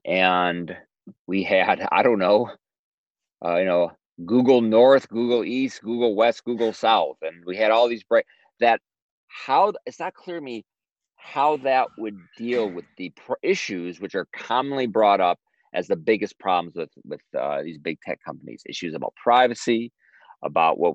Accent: American